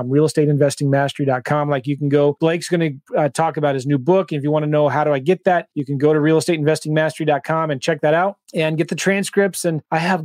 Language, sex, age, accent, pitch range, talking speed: English, male, 30-49, American, 155-195 Hz, 235 wpm